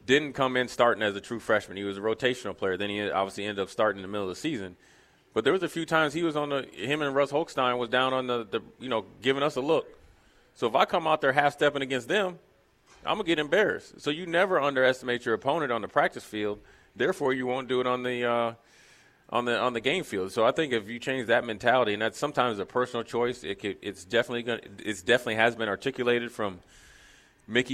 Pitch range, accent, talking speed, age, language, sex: 105-130 Hz, American, 250 wpm, 30-49, English, male